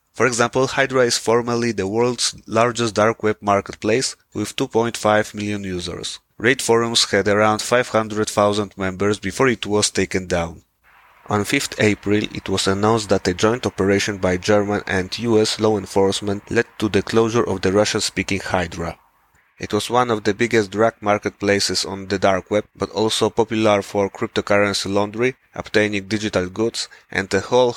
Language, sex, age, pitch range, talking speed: English, male, 30-49, 95-115 Hz, 160 wpm